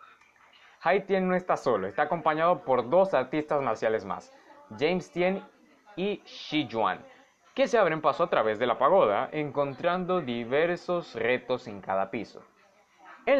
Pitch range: 145-190 Hz